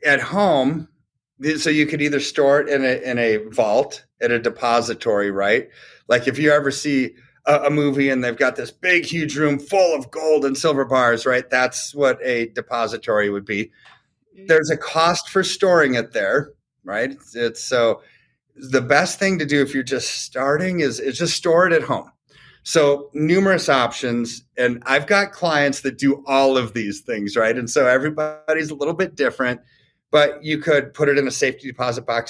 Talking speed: 190 wpm